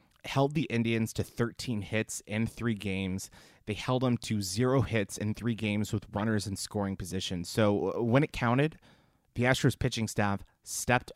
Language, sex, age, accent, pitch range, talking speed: English, male, 30-49, American, 100-115 Hz, 170 wpm